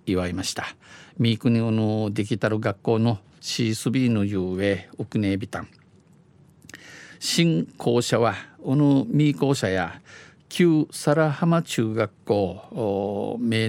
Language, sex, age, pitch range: Japanese, male, 50-69, 110-145 Hz